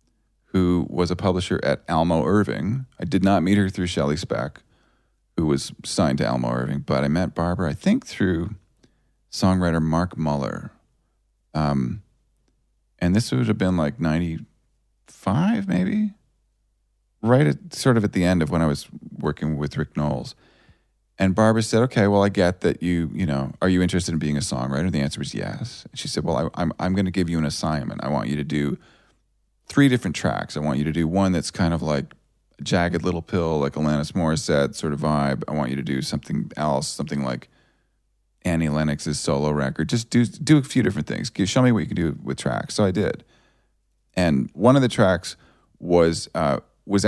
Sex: male